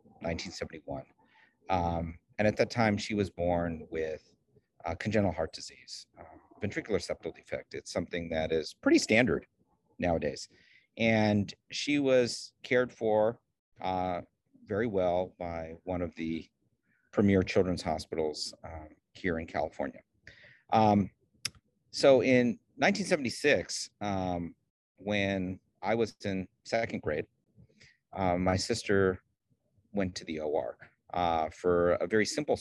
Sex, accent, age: male, American, 40-59